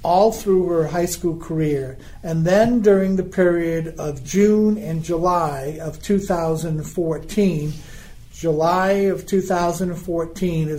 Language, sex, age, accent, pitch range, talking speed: English, male, 50-69, American, 165-190 Hz, 110 wpm